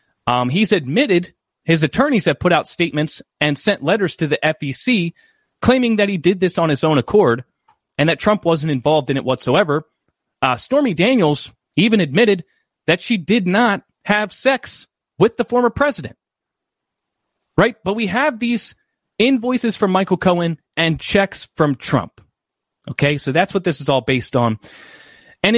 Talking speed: 165 wpm